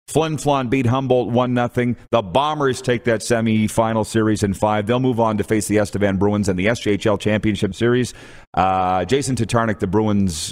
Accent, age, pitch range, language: American, 40-59, 95-120 Hz, English